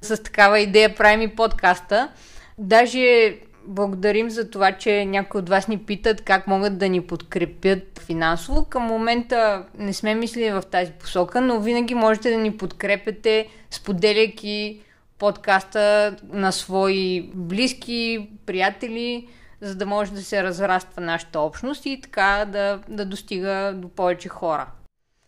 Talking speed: 140 wpm